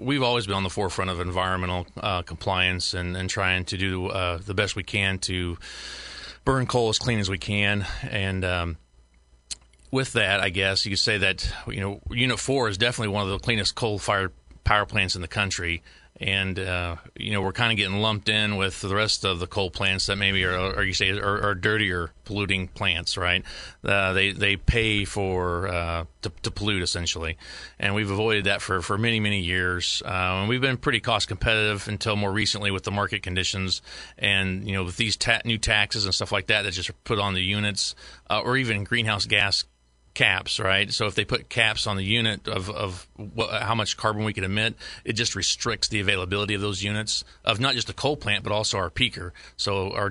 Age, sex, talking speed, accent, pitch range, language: 30-49, male, 210 wpm, American, 95-110 Hz, English